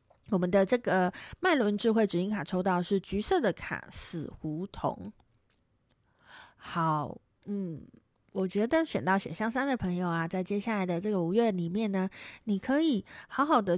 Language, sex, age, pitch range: Chinese, female, 30-49, 175-235 Hz